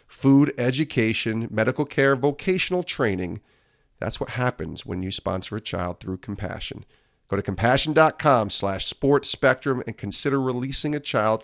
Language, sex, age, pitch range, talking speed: English, male, 40-59, 110-140 Hz, 140 wpm